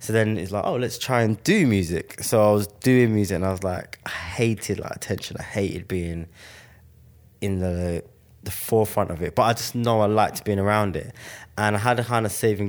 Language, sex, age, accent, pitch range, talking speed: English, male, 20-39, British, 90-110 Hz, 225 wpm